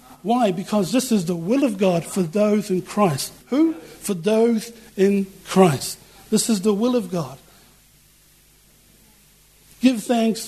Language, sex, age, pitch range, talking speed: English, male, 60-79, 185-230 Hz, 145 wpm